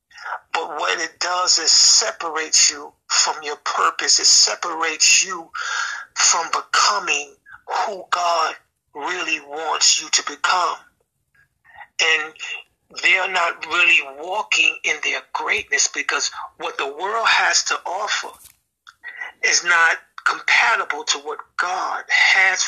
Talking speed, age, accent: 120 wpm, 50-69, American